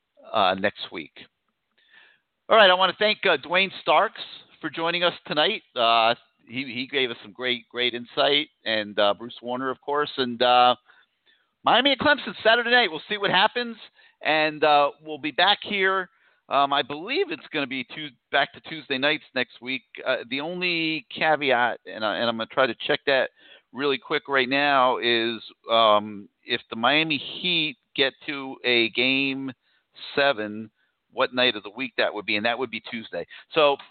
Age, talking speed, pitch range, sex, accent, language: 50-69, 185 wpm, 125-170 Hz, male, American, English